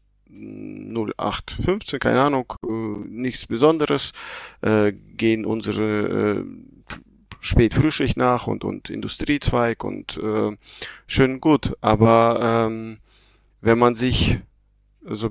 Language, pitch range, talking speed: German, 105-125 Hz, 95 wpm